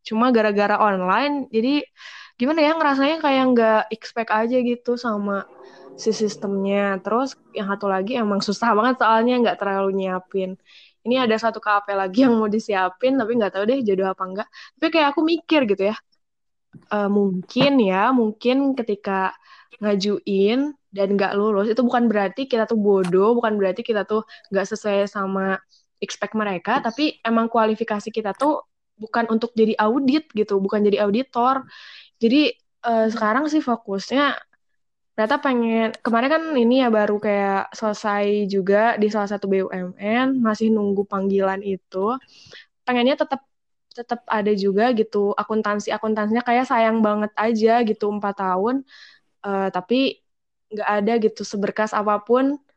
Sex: female